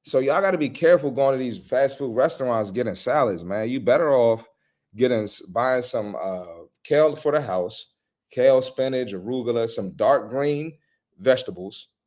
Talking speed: 165 wpm